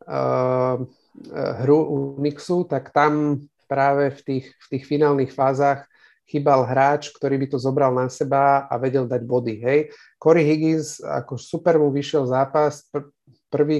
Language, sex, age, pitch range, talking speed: Slovak, male, 40-59, 125-145 Hz, 135 wpm